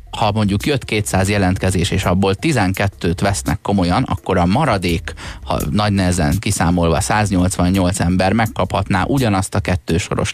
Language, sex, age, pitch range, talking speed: Hungarian, male, 30-49, 90-110 Hz, 135 wpm